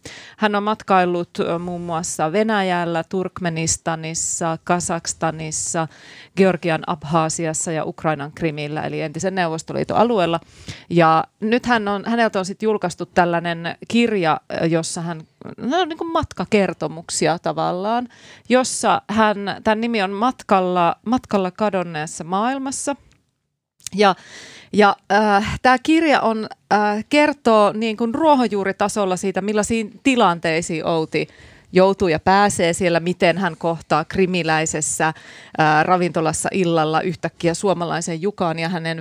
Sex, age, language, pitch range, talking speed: female, 30-49, Finnish, 160-200 Hz, 115 wpm